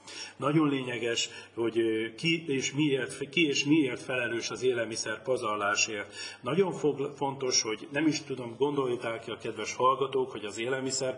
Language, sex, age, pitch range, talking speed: Hungarian, male, 40-59, 115-145 Hz, 130 wpm